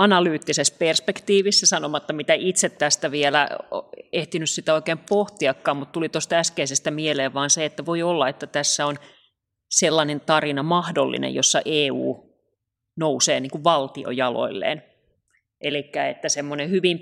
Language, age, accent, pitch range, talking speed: Finnish, 30-49, native, 140-160 Hz, 125 wpm